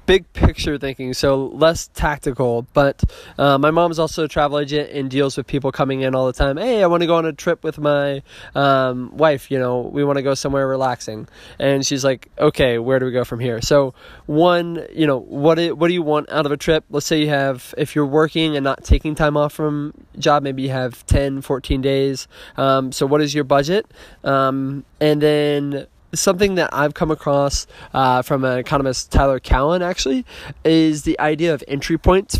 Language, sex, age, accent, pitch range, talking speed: English, male, 20-39, American, 135-155 Hz, 215 wpm